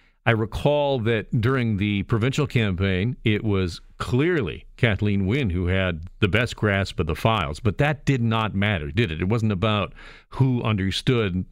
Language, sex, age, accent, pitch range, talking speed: English, male, 50-69, American, 95-125 Hz, 165 wpm